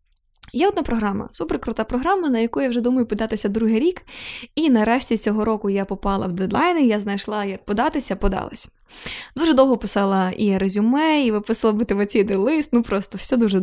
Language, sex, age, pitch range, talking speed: Ukrainian, female, 10-29, 210-275 Hz, 170 wpm